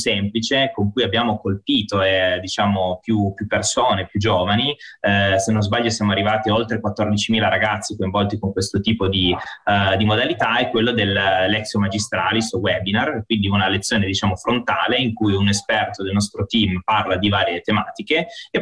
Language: Italian